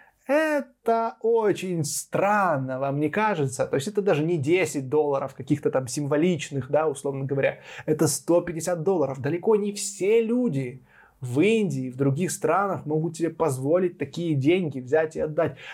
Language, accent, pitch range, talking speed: Russian, native, 145-200 Hz, 150 wpm